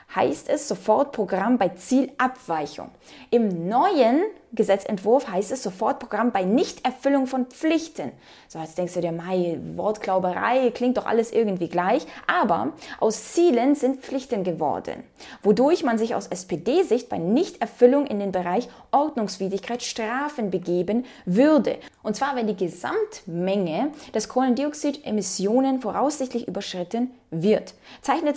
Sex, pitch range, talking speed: female, 190-260 Hz, 125 wpm